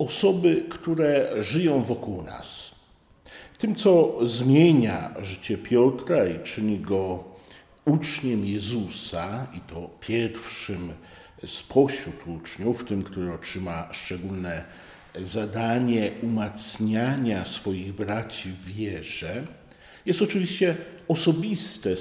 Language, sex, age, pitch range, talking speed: Polish, male, 50-69, 95-140 Hz, 90 wpm